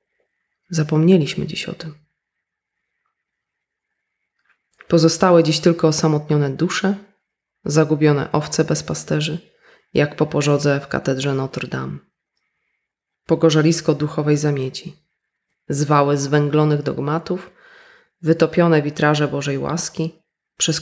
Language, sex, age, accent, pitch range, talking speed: Polish, female, 20-39, native, 145-165 Hz, 90 wpm